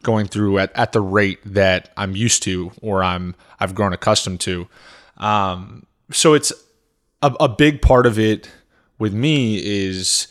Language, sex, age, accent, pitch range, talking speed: English, male, 20-39, American, 95-110 Hz, 165 wpm